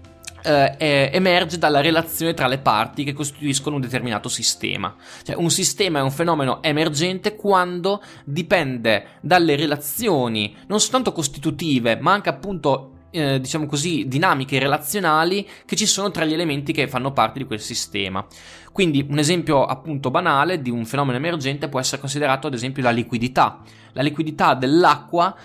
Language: Italian